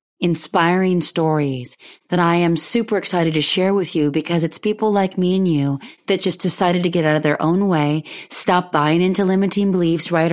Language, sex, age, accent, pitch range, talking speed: English, female, 30-49, American, 165-195 Hz, 200 wpm